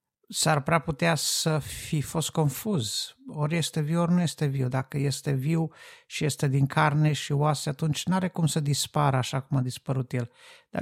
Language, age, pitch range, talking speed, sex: Romanian, 50-69, 135-170 Hz, 185 wpm, male